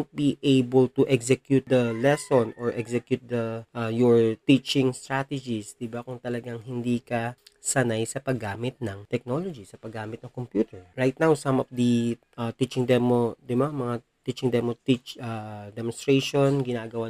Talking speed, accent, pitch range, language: 155 wpm, native, 120-140 Hz, Filipino